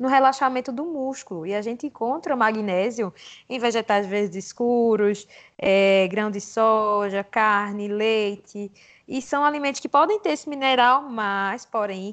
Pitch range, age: 200-240 Hz, 20-39